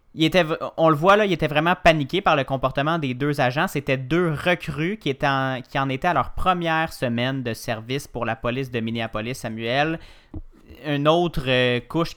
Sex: male